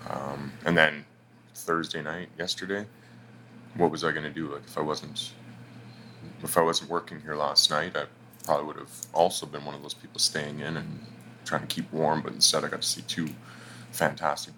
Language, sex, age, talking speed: English, male, 20-39, 200 wpm